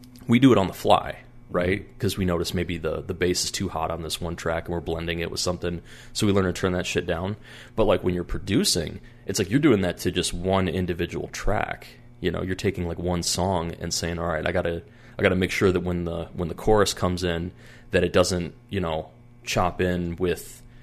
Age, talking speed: 30-49, 245 wpm